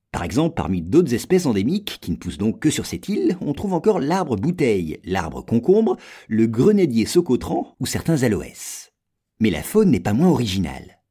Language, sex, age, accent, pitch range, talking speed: French, male, 50-69, French, 100-165 Hz, 185 wpm